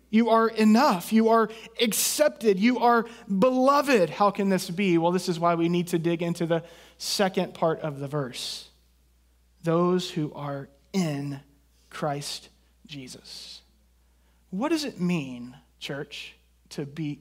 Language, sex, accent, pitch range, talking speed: English, male, American, 150-200 Hz, 145 wpm